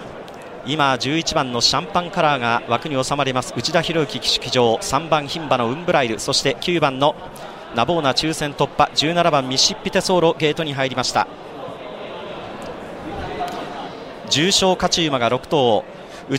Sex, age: male, 40-59